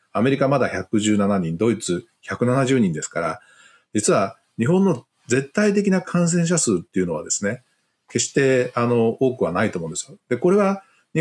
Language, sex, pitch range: Japanese, male, 100-150 Hz